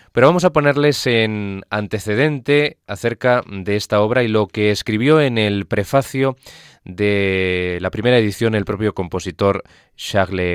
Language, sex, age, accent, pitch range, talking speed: Spanish, male, 20-39, Spanish, 95-125 Hz, 140 wpm